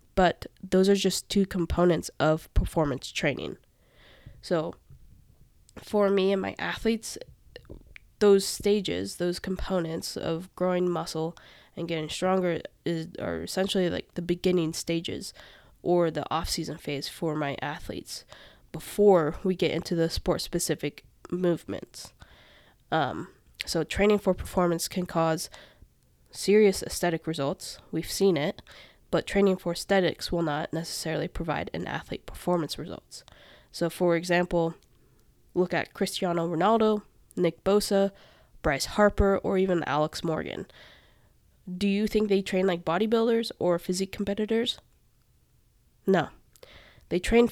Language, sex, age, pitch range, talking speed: English, female, 10-29, 165-195 Hz, 125 wpm